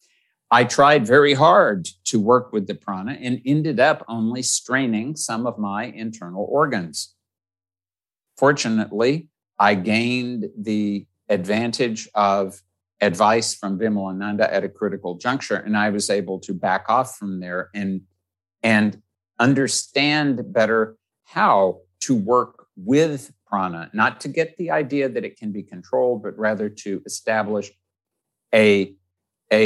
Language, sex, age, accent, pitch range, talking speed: English, male, 60-79, American, 95-125 Hz, 135 wpm